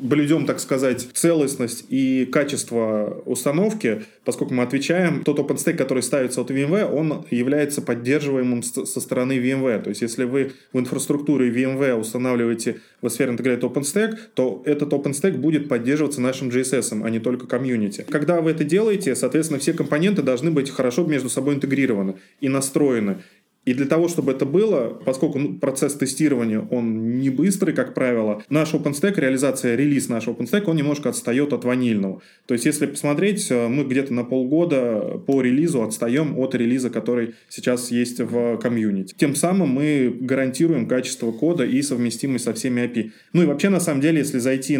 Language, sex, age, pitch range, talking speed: Russian, male, 20-39, 125-150 Hz, 165 wpm